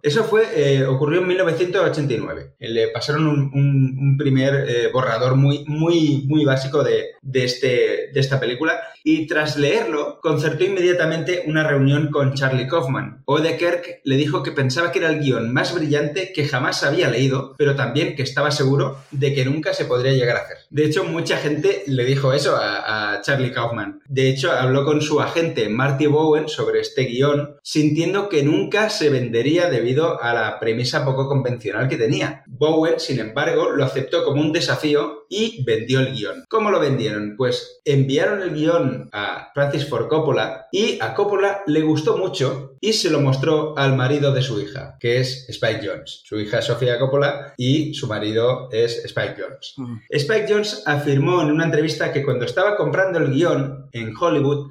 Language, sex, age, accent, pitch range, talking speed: Spanish, male, 20-39, Spanish, 135-175 Hz, 180 wpm